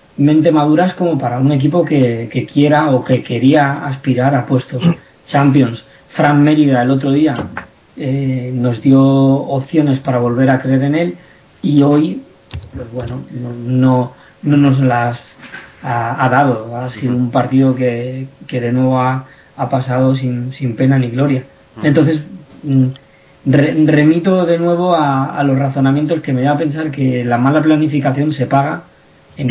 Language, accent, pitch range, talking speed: Spanish, Spanish, 125-150 Hz, 165 wpm